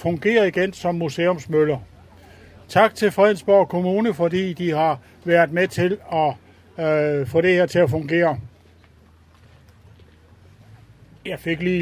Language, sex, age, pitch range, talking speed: Danish, male, 60-79, 120-185 Hz, 125 wpm